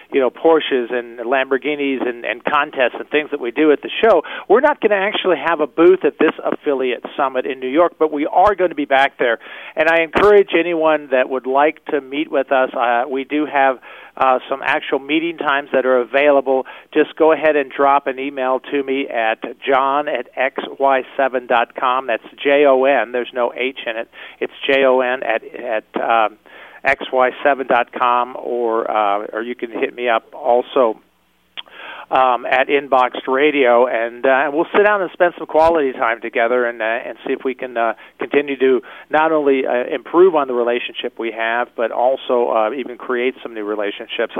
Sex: male